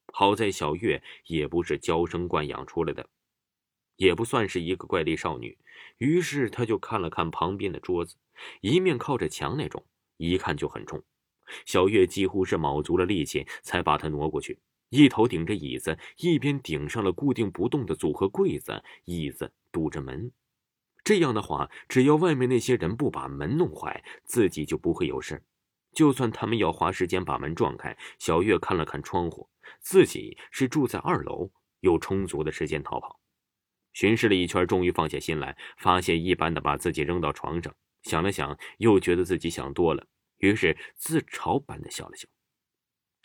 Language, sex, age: Chinese, male, 20-39